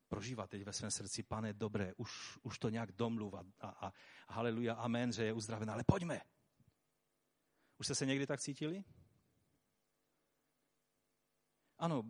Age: 40-59